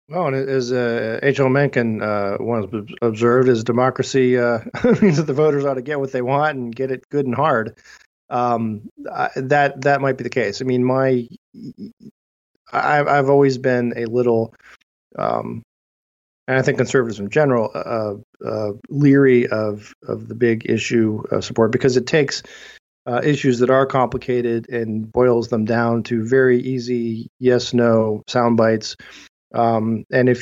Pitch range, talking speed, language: 115-130 Hz, 170 wpm, English